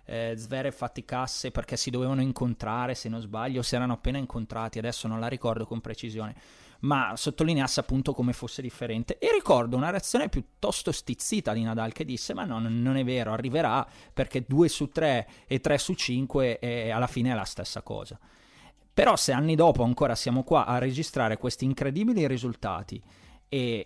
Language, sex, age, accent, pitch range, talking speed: Italian, male, 20-39, native, 115-140 Hz, 175 wpm